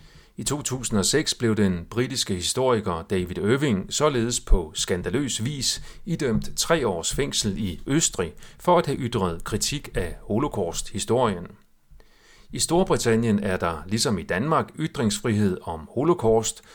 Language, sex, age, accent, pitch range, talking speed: Danish, male, 40-59, native, 100-135 Hz, 125 wpm